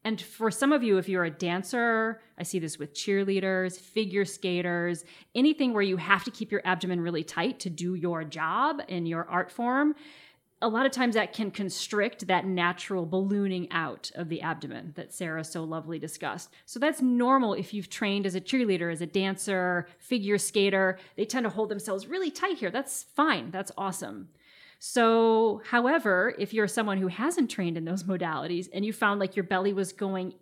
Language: English